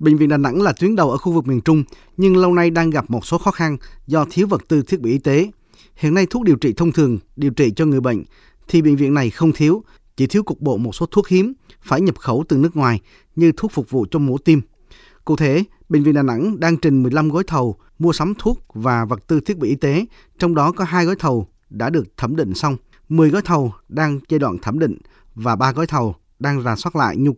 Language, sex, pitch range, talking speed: Vietnamese, male, 130-170 Hz, 255 wpm